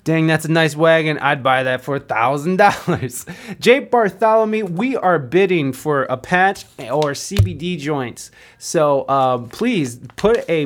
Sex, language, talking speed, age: male, English, 145 wpm, 20-39